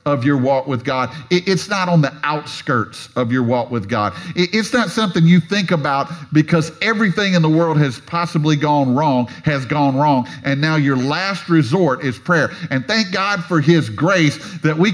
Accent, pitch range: American, 125-165 Hz